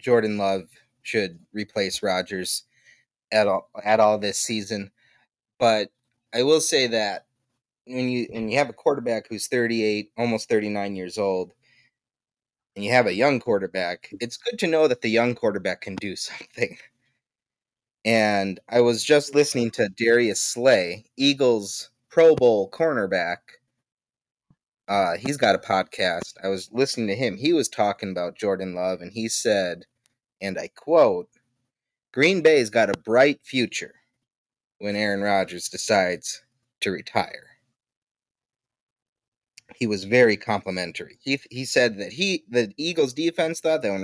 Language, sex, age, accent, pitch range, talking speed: English, male, 30-49, American, 105-130 Hz, 145 wpm